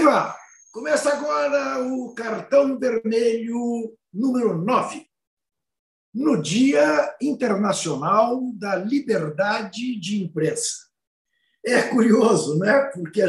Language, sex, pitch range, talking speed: Portuguese, male, 180-235 Hz, 85 wpm